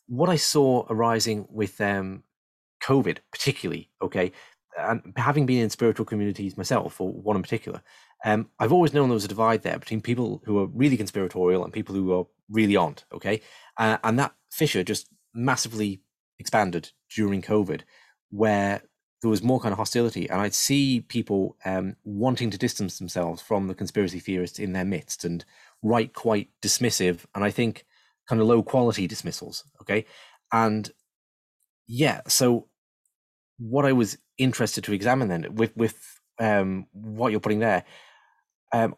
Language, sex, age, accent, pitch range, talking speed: English, male, 30-49, British, 100-120 Hz, 160 wpm